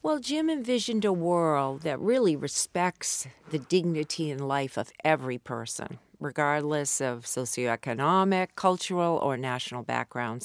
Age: 50-69